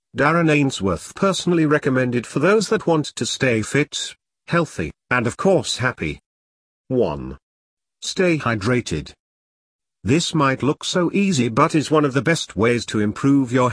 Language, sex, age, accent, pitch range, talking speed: English, male, 50-69, British, 110-155 Hz, 150 wpm